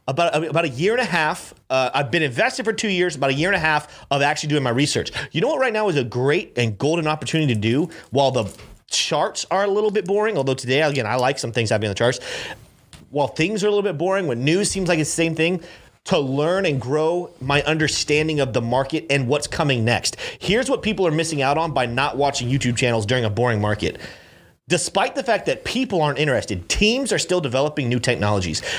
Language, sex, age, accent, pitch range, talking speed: English, male, 30-49, American, 130-180 Hz, 240 wpm